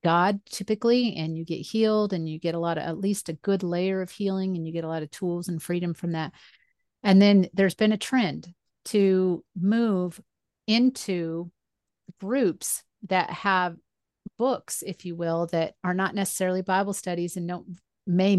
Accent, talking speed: American, 180 wpm